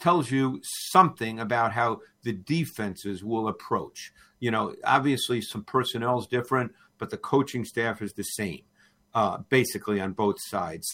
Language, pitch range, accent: English, 110-135 Hz, American